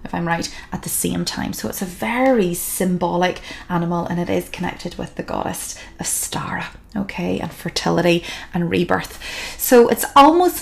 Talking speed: 165 wpm